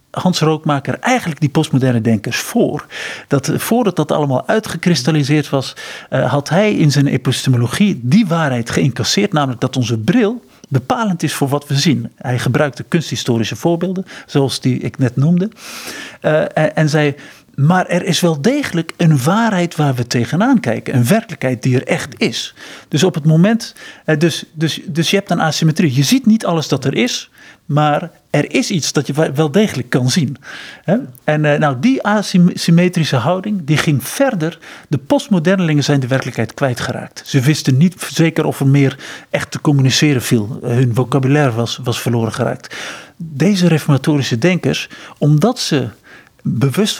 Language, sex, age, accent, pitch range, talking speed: Dutch, male, 50-69, Dutch, 135-180 Hz, 160 wpm